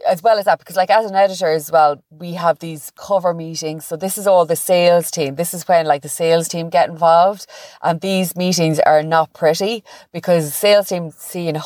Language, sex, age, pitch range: English, female, 30-49, 150-175 Hz